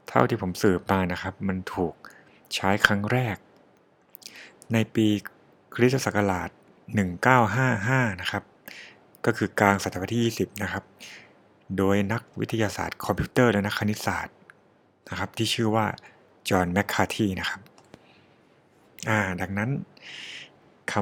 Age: 60-79